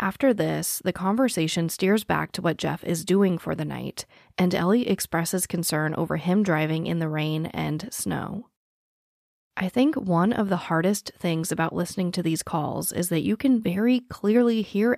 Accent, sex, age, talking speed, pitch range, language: American, female, 30-49, 180 wpm, 170-220 Hz, English